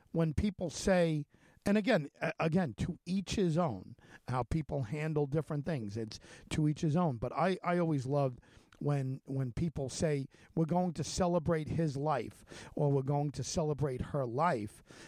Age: 50-69